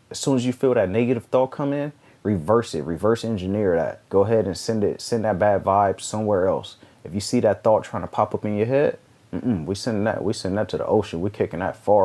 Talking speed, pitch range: 265 wpm, 95-110 Hz